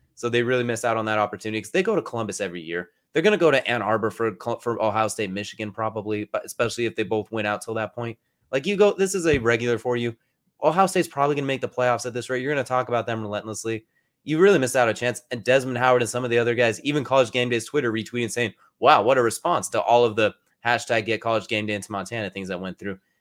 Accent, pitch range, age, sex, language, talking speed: American, 110-135 Hz, 20-39, male, English, 275 wpm